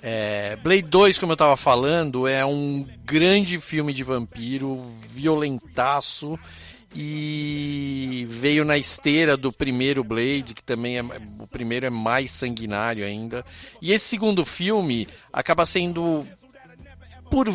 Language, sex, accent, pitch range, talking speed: Portuguese, male, Brazilian, 120-150 Hz, 125 wpm